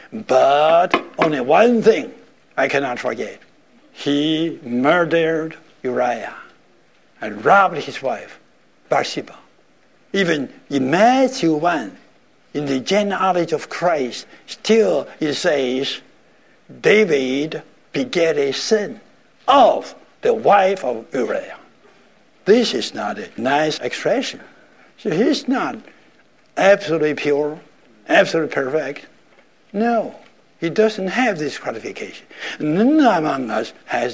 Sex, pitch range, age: male, 135-200 Hz, 60-79